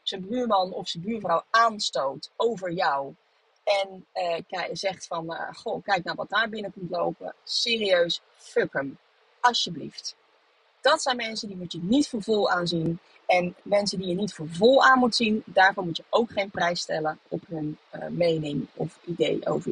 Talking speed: 190 wpm